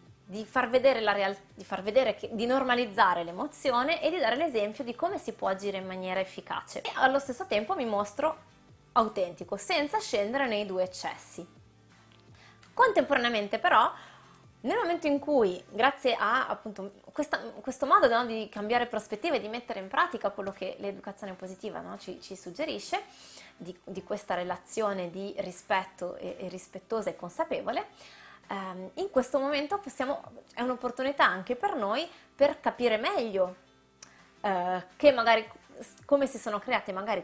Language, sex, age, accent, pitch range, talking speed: Italian, female, 20-39, native, 195-265 Hz, 155 wpm